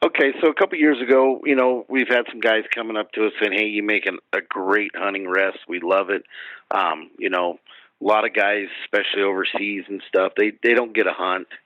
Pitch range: 95-125 Hz